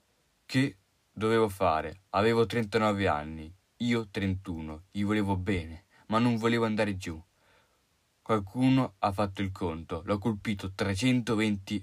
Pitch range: 95-115 Hz